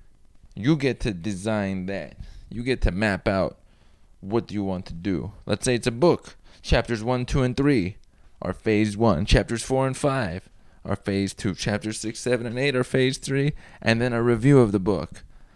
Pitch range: 95-125 Hz